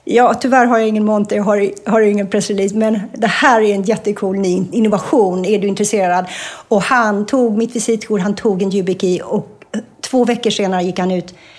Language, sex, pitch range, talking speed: Swedish, female, 190-230 Hz, 190 wpm